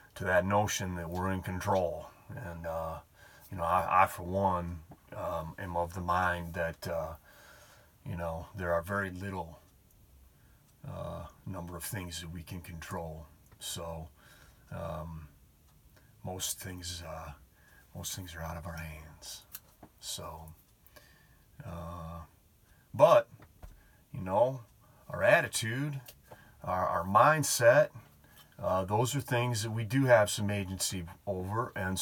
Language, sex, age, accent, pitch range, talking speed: English, male, 40-59, American, 85-100 Hz, 130 wpm